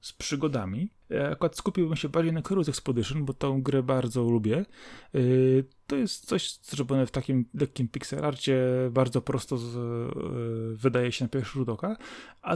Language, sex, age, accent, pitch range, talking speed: Polish, male, 30-49, native, 125-155 Hz, 170 wpm